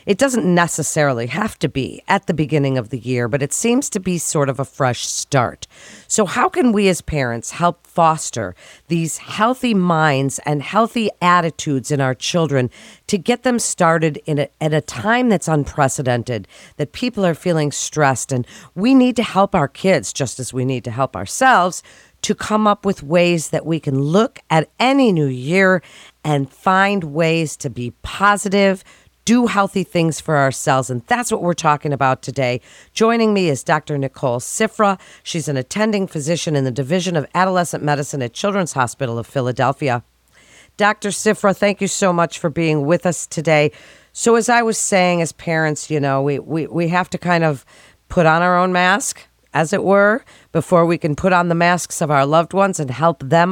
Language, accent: English, American